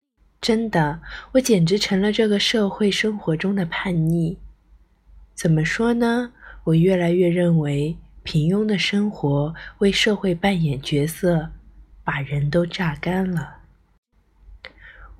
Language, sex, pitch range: Chinese, female, 155-200 Hz